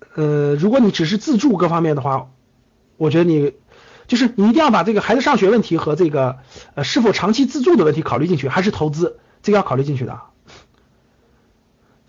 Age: 50-69